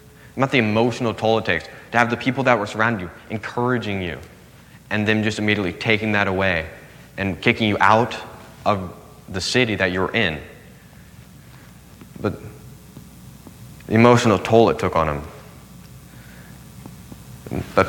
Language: English